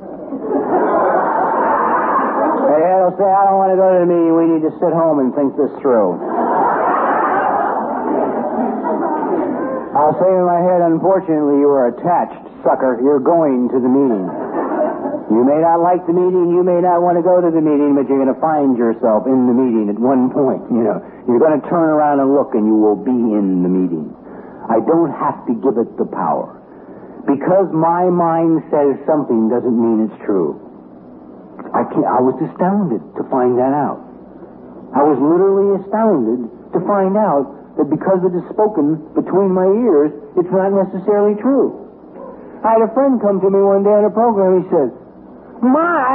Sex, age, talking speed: male, 60-79, 180 wpm